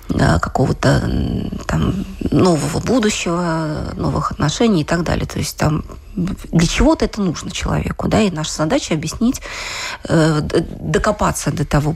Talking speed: 125 wpm